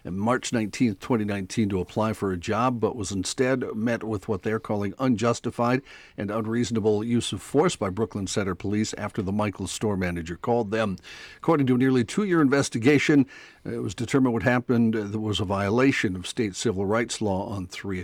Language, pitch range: English, 100-125 Hz